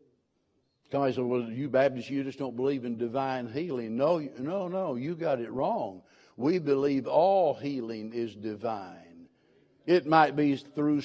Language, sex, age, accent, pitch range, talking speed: English, male, 60-79, American, 125-155 Hz, 160 wpm